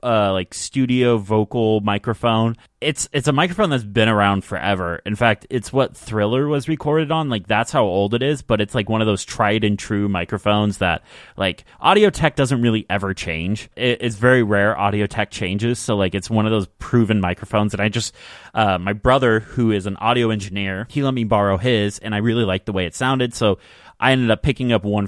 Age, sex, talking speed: 30-49, male, 220 wpm